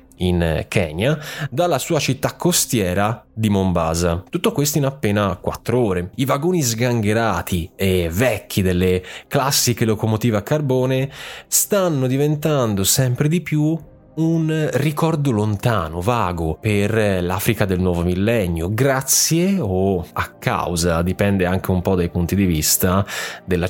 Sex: male